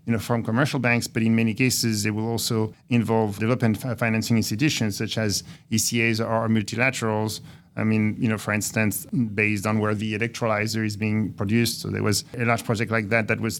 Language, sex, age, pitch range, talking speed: English, male, 40-59, 110-120 Hz, 200 wpm